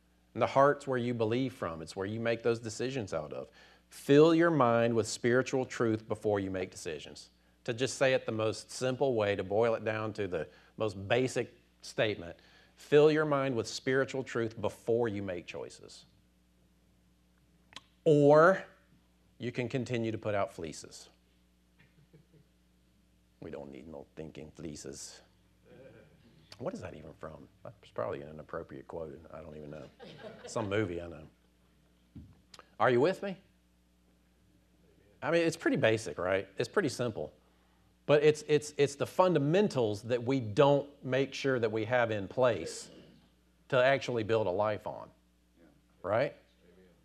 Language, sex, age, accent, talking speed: English, male, 50-69, American, 155 wpm